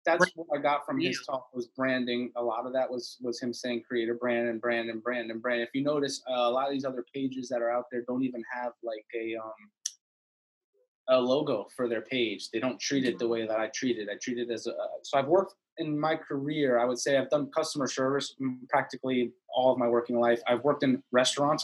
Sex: male